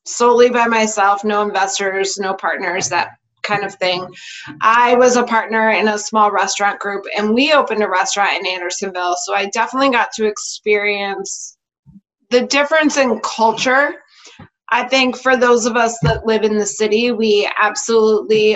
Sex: female